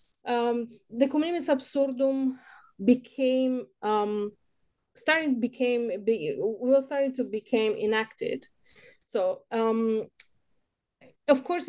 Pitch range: 205-265 Hz